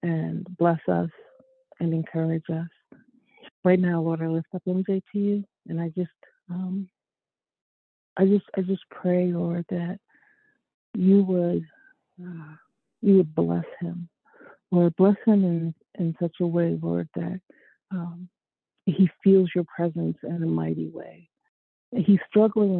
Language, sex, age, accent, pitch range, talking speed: English, female, 50-69, American, 160-190 Hz, 140 wpm